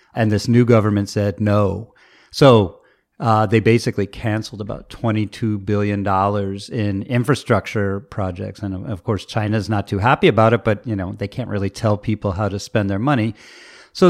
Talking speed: 180 wpm